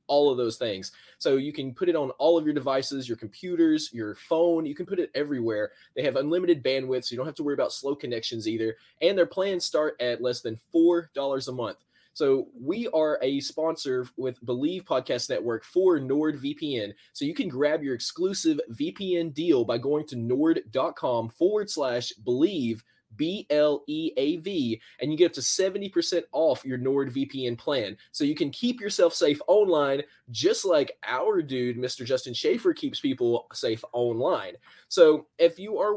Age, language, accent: 20-39, English, American